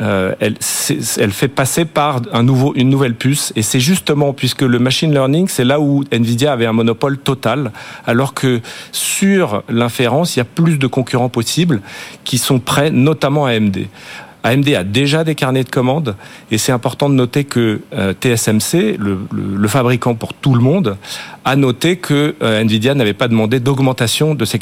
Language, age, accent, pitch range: French, 40-59, French, 115-145 Hz